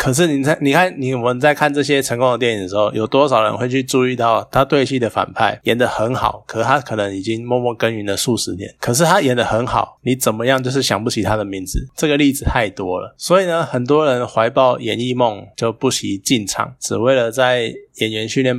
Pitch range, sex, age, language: 105-135 Hz, male, 20-39, Chinese